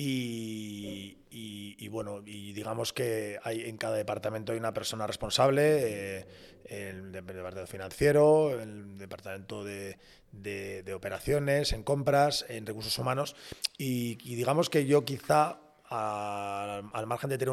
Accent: Spanish